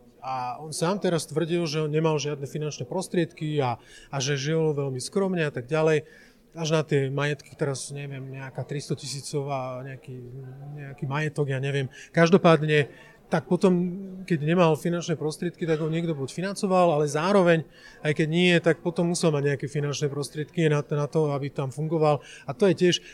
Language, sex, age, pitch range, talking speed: Slovak, male, 30-49, 145-180 Hz, 175 wpm